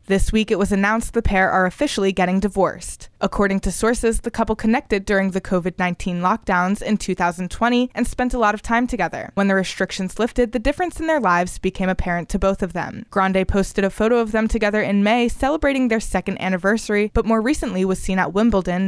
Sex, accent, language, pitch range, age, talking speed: female, American, English, 190-230 Hz, 20-39, 205 wpm